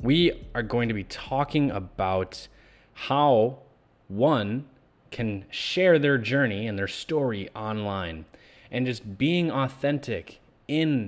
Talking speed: 120 wpm